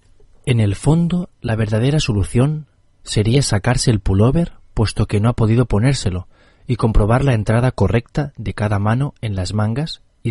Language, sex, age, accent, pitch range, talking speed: Spanish, male, 30-49, Spanish, 100-130 Hz, 165 wpm